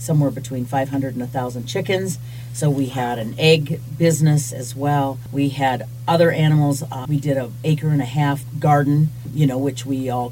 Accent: American